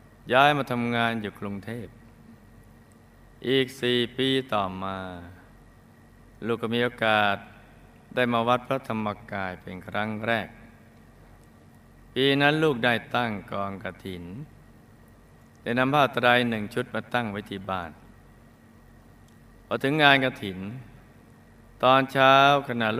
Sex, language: male, Thai